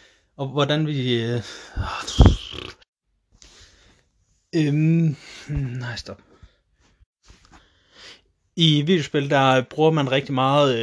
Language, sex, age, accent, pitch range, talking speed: Danish, male, 30-49, native, 120-145 Hz, 85 wpm